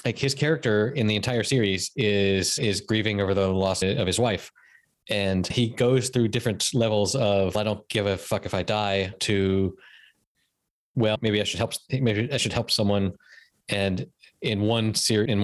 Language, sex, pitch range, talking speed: English, male, 100-125 Hz, 185 wpm